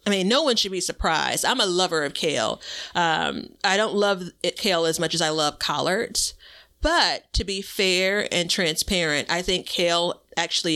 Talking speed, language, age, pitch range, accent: 190 wpm, English, 40-59, 155-190 Hz, American